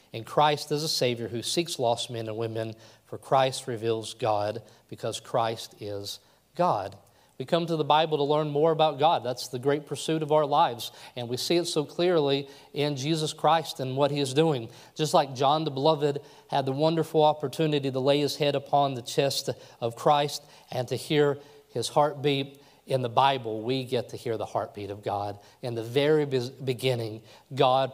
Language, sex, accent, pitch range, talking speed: English, male, American, 115-150 Hz, 190 wpm